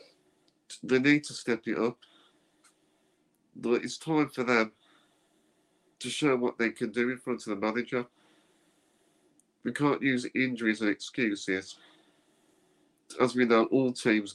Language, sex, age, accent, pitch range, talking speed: English, male, 50-69, British, 115-135 Hz, 135 wpm